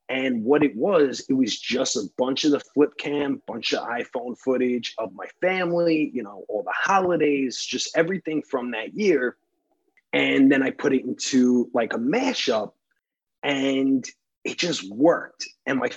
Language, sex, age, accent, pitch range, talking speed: English, male, 30-49, American, 125-165 Hz, 170 wpm